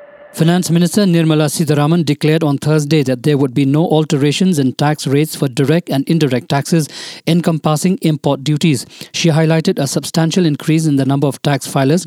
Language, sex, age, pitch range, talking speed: English, male, 50-69, 145-170 Hz, 175 wpm